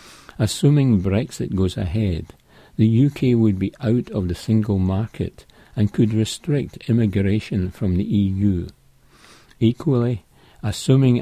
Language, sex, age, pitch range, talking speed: English, male, 60-79, 95-115 Hz, 120 wpm